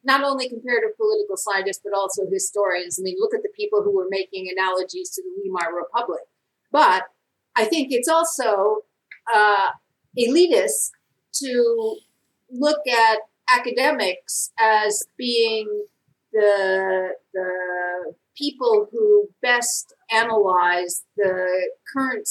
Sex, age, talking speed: female, 50-69, 115 wpm